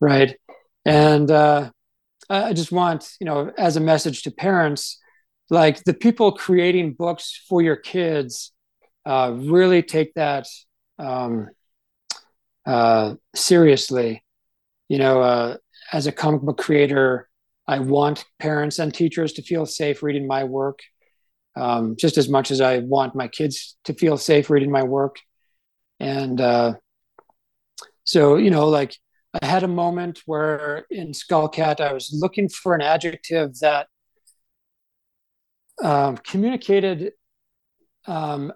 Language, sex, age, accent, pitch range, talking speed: English, male, 40-59, American, 135-175 Hz, 130 wpm